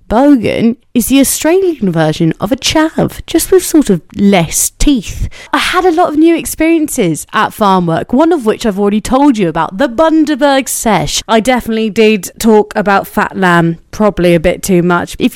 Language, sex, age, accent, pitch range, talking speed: English, female, 30-49, British, 180-240 Hz, 190 wpm